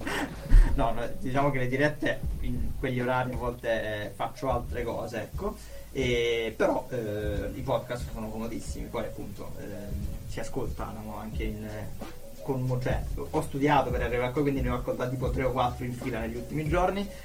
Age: 20-39